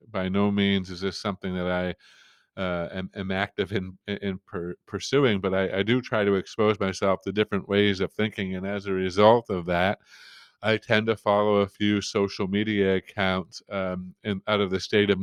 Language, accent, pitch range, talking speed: English, American, 100-145 Hz, 200 wpm